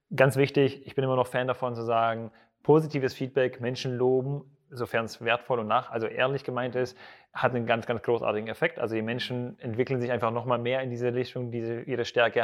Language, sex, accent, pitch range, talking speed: German, male, German, 120-140 Hz, 215 wpm